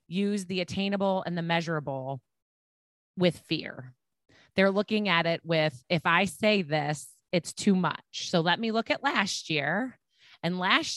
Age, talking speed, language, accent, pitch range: 30-49, 160 wpm, English, American, 155-210 Hz